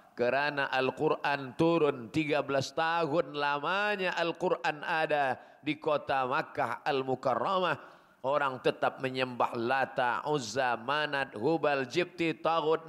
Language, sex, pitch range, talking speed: Malay, male, 140-170 Hz, 100 wpm